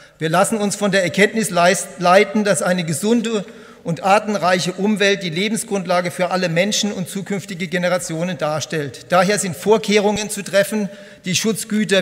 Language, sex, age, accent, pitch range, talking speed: German, male, 50-69, German, 175-205 Hz, 150 wpm